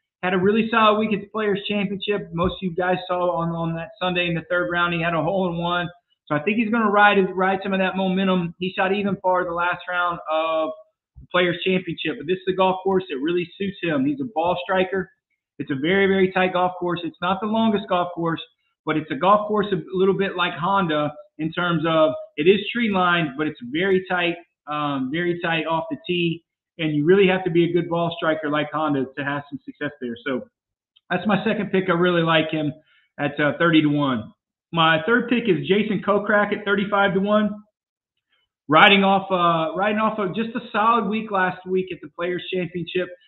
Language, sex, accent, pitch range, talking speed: English, male, American, 170-200 Hz, 220 wpm